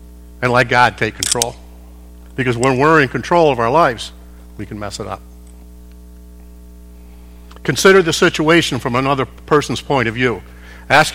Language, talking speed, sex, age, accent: English, 150 wpm, male, 50-69, American